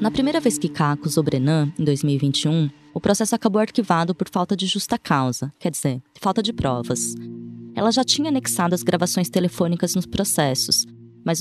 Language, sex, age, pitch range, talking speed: Portuguese, female, 20-39, 145-195 Hz, 175 wpm